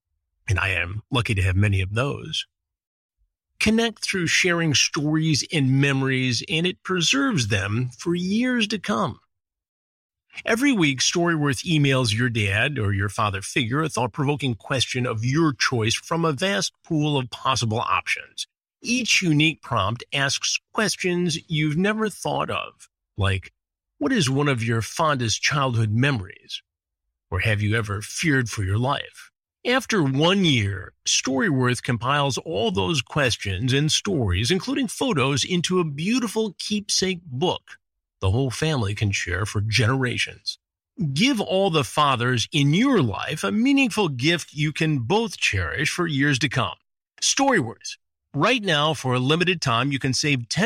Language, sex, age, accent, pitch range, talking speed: English, male, 50-69, American, 115-175 Hz, 145 wpm